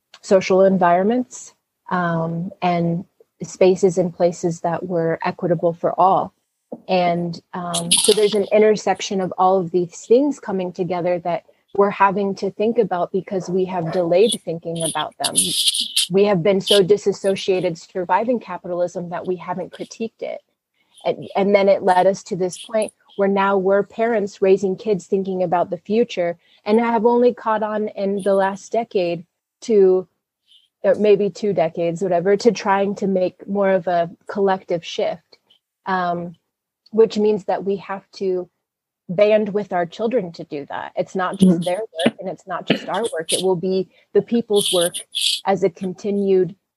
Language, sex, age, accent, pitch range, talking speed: English, female, 30-49, American, 175-205 Hz, 160 wpm